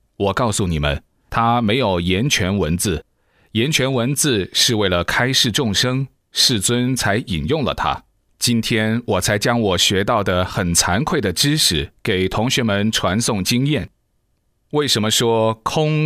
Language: Chinese